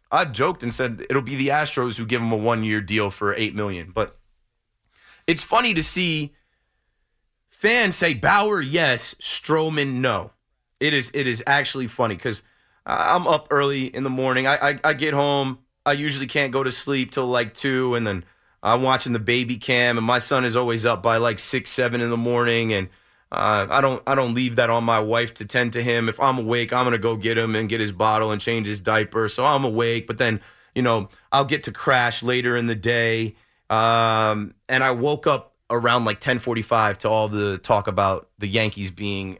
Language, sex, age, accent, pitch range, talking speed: English, male, 30-49, American, 110-140 Hz, 210 wpm